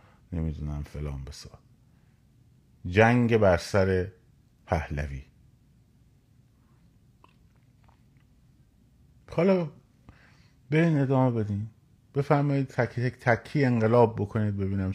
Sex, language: male, Persian